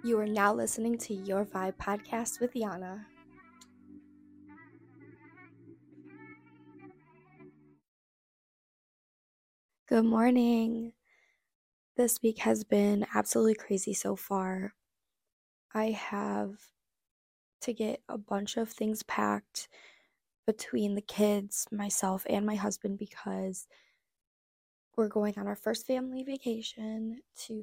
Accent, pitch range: American, 185-230 Hz